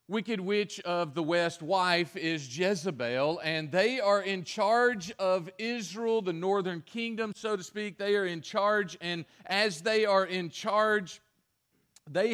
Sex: male